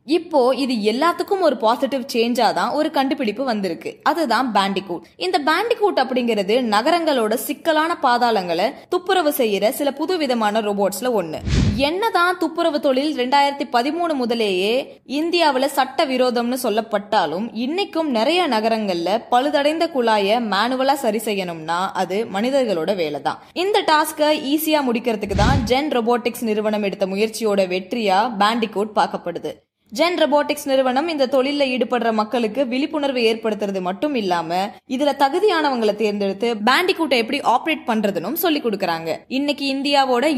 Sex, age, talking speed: female, 20-39, 110 wpm